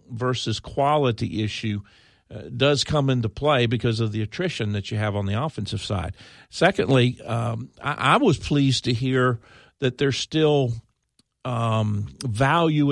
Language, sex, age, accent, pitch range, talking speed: English, male, 50-69, American, 110-135 Hz, 150 wpm